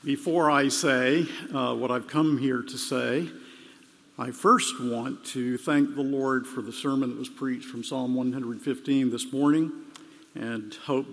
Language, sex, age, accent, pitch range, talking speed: English, male, 50-69, American, 125-155 Hz, 160 wpm